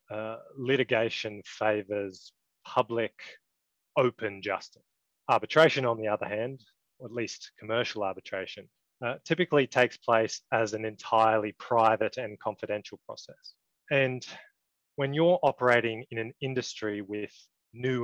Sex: male